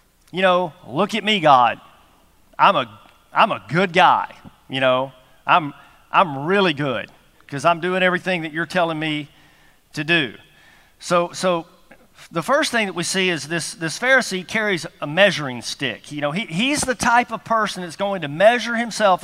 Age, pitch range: 50-69, 155-230 Hz